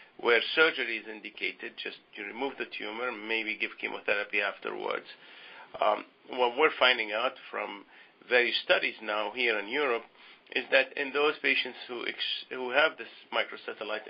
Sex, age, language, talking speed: male, 50-69, English, 150 wpm